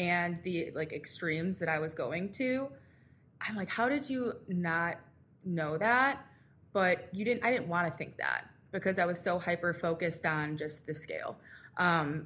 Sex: female